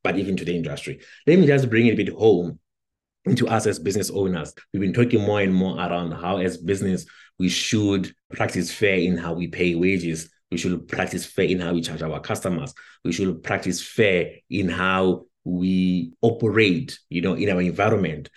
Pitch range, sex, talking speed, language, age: 90-115 Hz, male, 195 wpm, English, 30-49